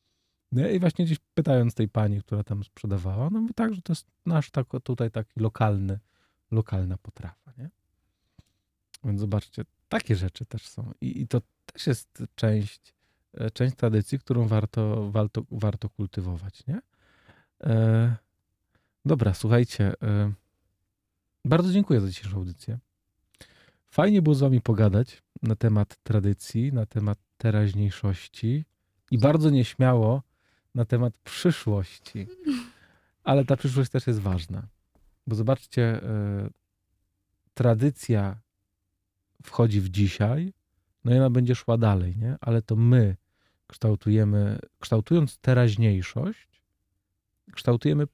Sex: male